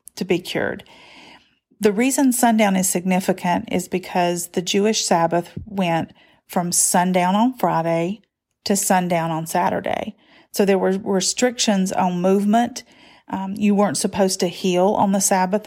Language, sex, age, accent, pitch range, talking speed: English, female, 40-59, American, 180-215 Hz, 140 wpm